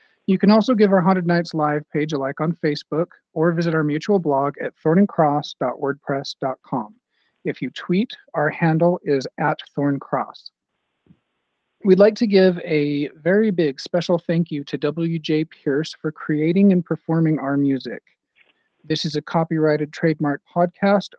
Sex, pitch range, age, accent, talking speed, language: male, 145-180 Hz, 40-59, American, 150 wpm, English